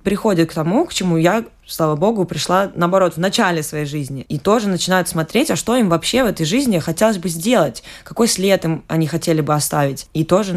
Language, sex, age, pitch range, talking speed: Russian, female, 20-39, 150-180 Hz, 210 wpm